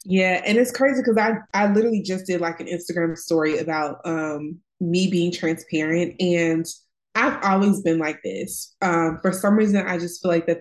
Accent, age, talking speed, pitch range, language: American, 20-39, 190 wpm, 160-195 Hz, English